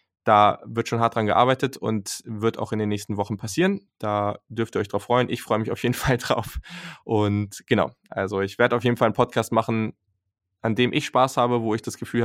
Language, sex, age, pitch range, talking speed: German, male, 10-29, 100-120 Hz, 230 wpm